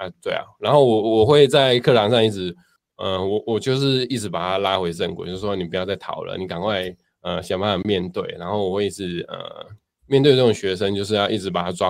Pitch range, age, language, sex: 95-110 Hz, 20-39, Chinese, male